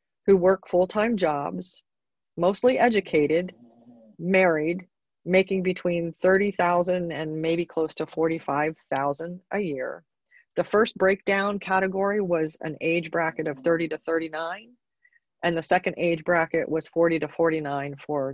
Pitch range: 155-185 Hz